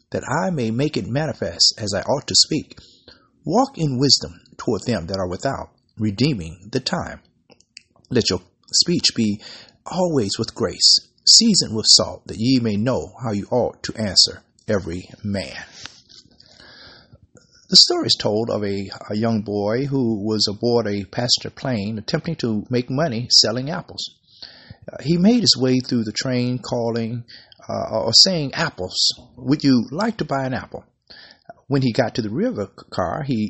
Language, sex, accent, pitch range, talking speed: English, male, American, 105-140 Hz, 170 wpm